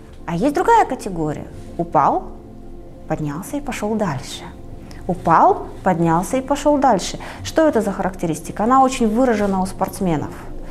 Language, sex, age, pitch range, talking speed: Russian, female, 30-49, 185-285 Hz, 130 wpm